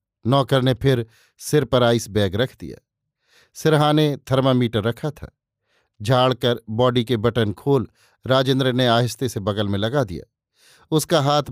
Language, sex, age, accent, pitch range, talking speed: Hindi, male, 50-69, native, 115-145 Hz, 145 wpm